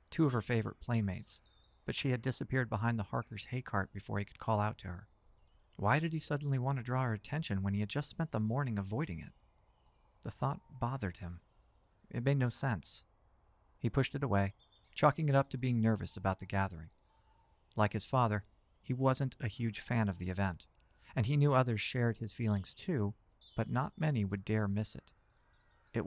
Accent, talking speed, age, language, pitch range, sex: American, 200 wpm, 40-59, English, 100-125 Hz, male